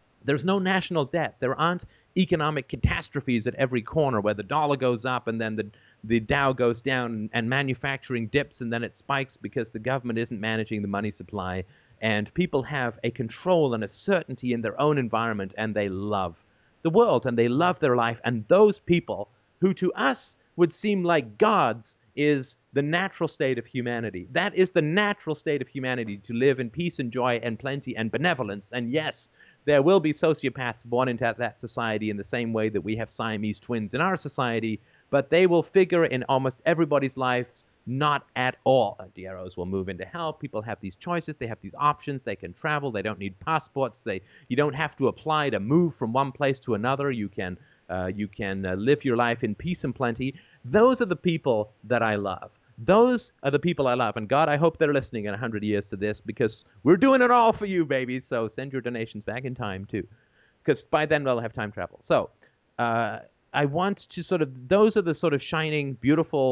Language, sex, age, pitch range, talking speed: English, male, 40-59, 110-150 Hz, 215 wpm